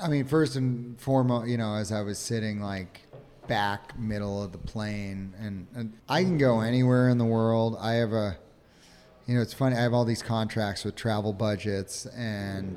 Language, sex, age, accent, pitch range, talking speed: English, male, 30-49, American, 110-130 Hz, 195 wpm